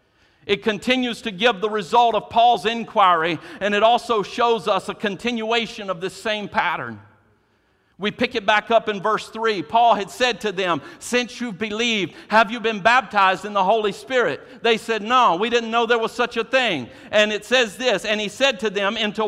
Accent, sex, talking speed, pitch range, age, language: American, male, 200 wpm, 180-225 Hz, 50-69, English